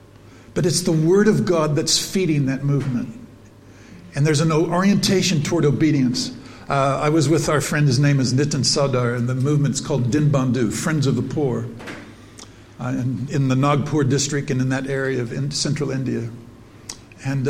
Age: 60-79